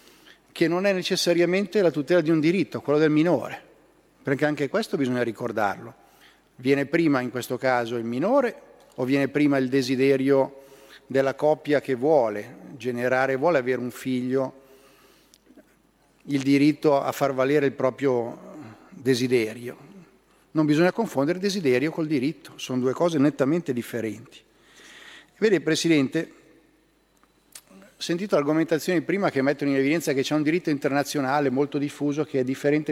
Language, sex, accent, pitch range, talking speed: Italian, male, native, 130-155 Hz, 140 wpm